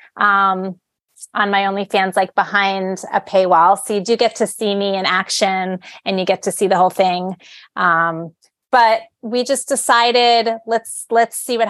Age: 30-49